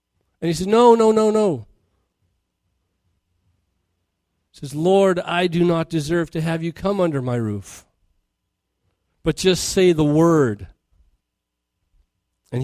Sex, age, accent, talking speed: male, 40-59, American, 130 wpm